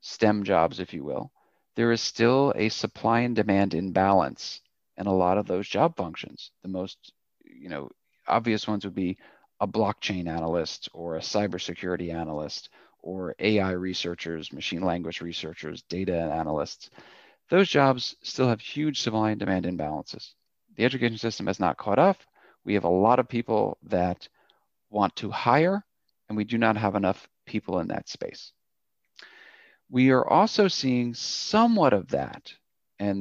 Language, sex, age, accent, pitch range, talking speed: English, male, 40-59, American, 100-125 Hz, 155 wpm